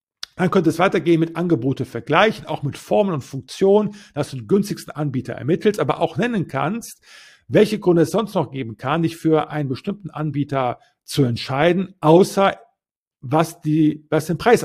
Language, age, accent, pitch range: German, 50-69, German, 145-180 Hz